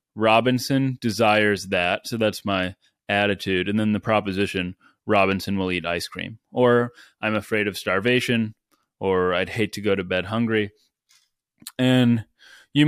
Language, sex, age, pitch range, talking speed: English, male, 20-39, 95-110 Hz, 145 wpm